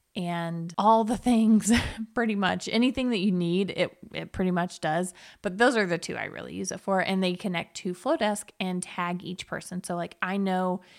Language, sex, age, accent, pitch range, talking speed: English, female, 20-39, American, 175-215 Hz, 205 wpm